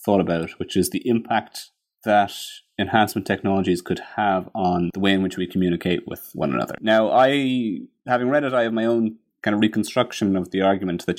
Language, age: English, 30-49